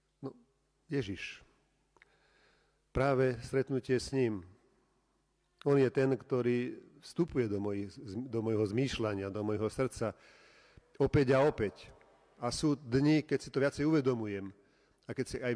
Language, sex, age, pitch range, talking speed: Slovak, male, 40-59, 100-125 Hz, 125 wpm